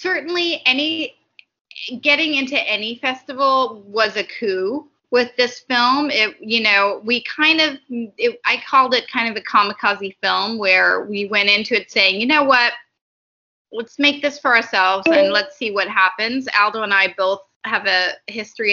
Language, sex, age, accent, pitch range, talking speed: English, female, 20-39, American, 200-250 Hz, 170 wpm